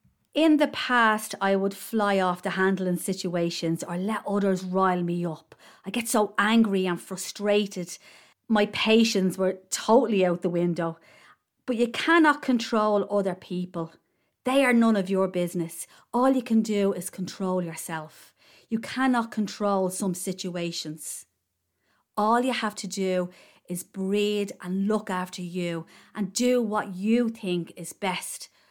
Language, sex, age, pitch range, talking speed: English, female, 40-59, 180-225 Hz, 150 wpm